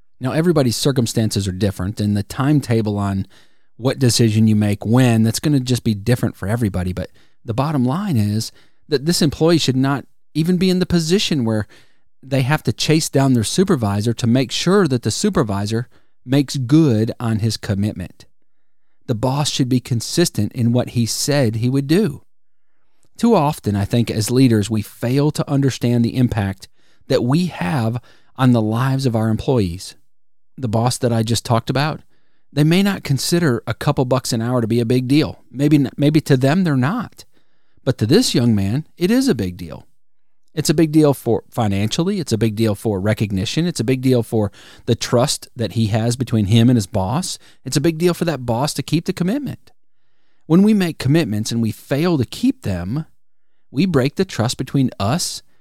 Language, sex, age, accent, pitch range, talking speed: English, male, 40-59, American, 110-150 Hz, 195 wpm